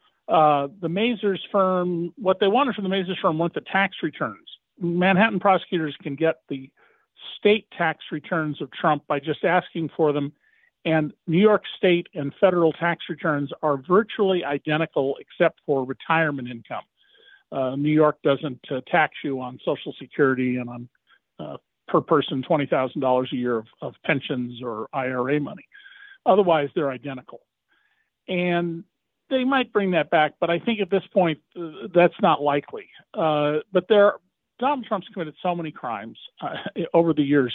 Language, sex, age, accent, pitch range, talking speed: English, male, 50-69, American, 145-190 Hz, 165 wpm